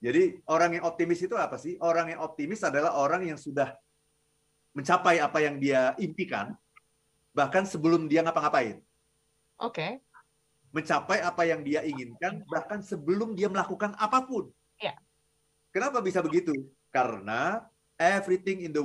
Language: Indonesian